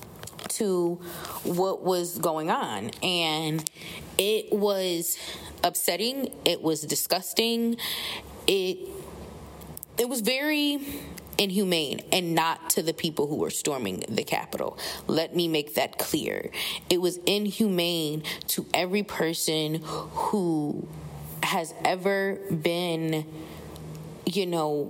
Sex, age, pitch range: female, 20-39, 160-200 Hz